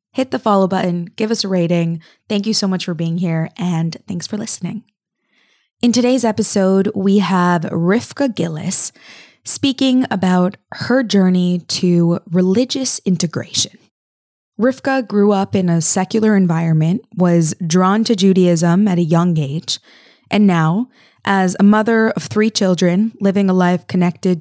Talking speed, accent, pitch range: 145 wpm, American, 170-210 Hz